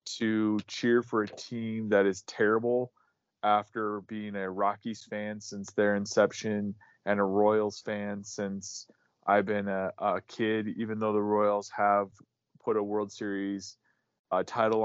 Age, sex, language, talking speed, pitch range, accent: 20-39, male, English, 150 wpm, 100-110 Hz, American